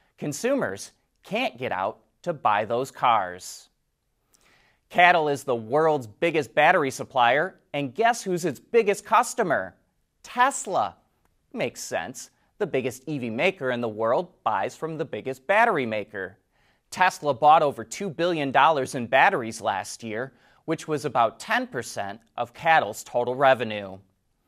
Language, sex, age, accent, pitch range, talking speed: English, male, 30-49, American, 125-195 Hz, 130 wpm